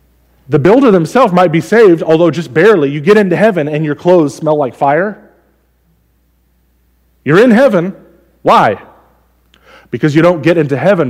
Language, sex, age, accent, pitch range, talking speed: English, male, 30-49, American, 115-165 Hz, 155 wpm